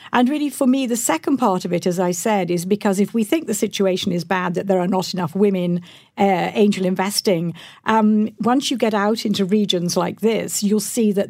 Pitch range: 185-225 Hz